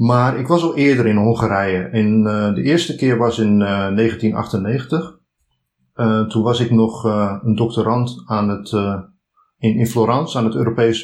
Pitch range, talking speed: 105-130 Hz, 170 wpm